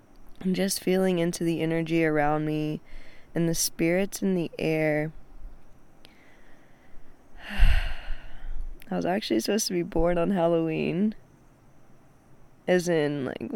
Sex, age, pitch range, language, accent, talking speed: female, 20-39, 150-210 Hz, English, American, 110 wpm